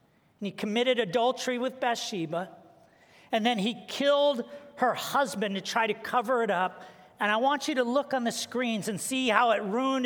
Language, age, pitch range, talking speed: English, 40-59, 210-265 Hz, 190 wpm